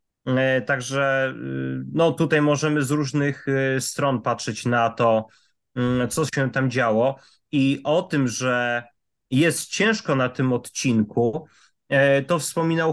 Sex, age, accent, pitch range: male, 30-49, native, 130-155 Hz